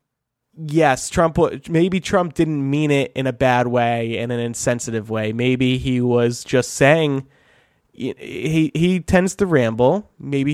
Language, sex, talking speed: English, male, 150 wpm